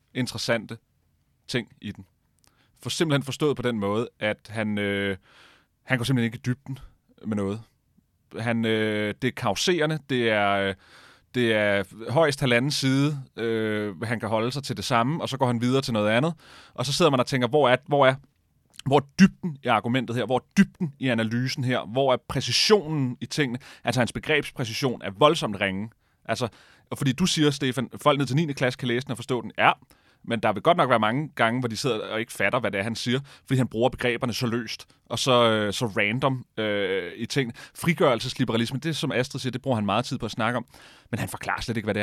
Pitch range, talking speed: 115-135 Hz, 220 wpm